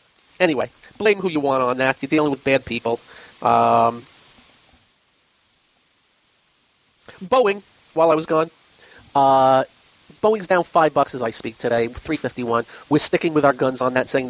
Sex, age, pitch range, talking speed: male, 40-59, 145-200 Hz, 150 wpm